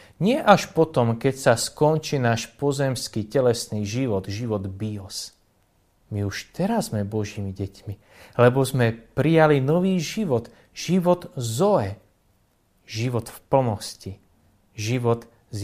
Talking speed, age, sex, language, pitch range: 115 wpm, 30-49, male, Slovak, 105-135 Hz